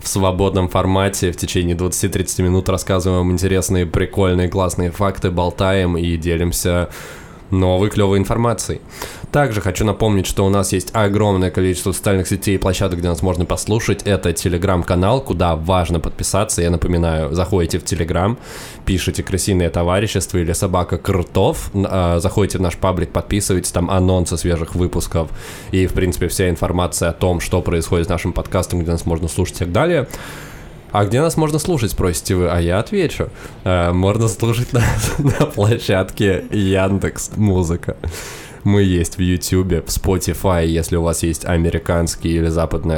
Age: 20-39